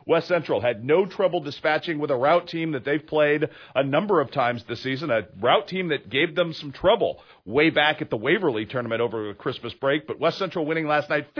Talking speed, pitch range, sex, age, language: 220 wpm, 125-170 Hz, male, 40-59, English